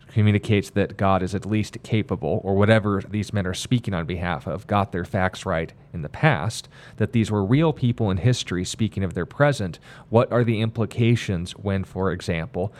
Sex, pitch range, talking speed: male, 100-120 Hz, 190 wpm